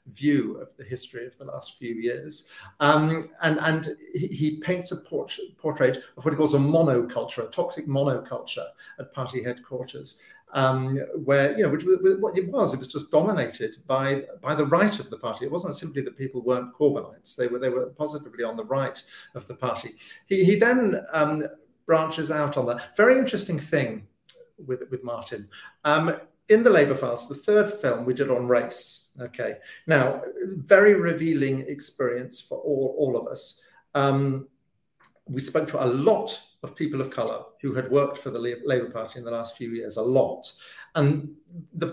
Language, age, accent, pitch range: English, 50-69, British, 125-170 Hz